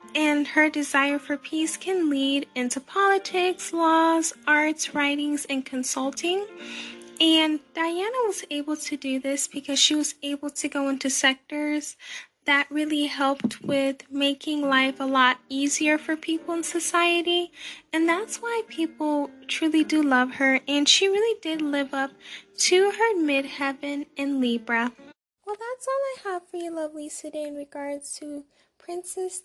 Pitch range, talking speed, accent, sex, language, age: 280-330 Hz, 150 wpm, American, female, English, 10-29